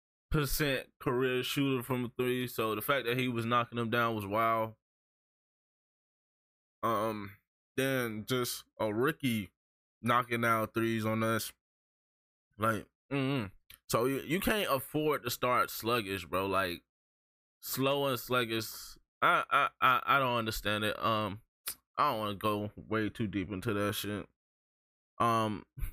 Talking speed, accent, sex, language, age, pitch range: 145 wpm, American, male, English, 20-39, 100-130 Hz